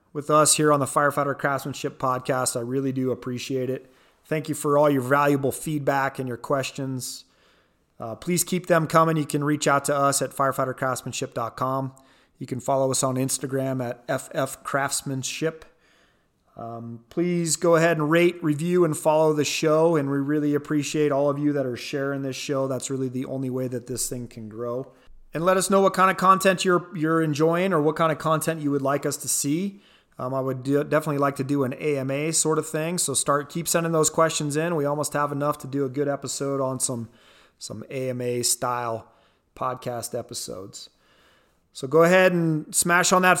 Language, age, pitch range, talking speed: English, 30-49, 135-165 Hz, 195 wpm